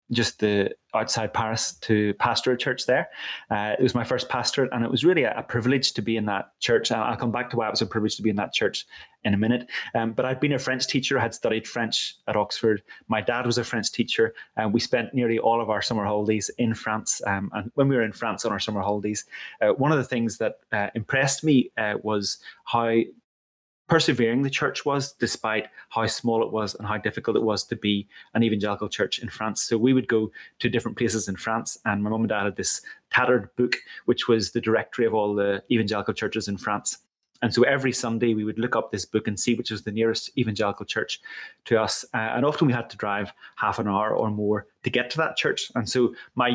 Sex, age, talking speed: male, 30-49, 240 wpm